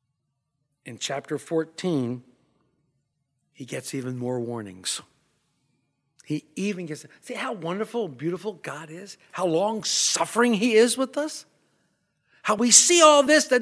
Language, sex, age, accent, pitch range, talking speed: English, male, 60-79, American, 140-180 Hz, 130 wpm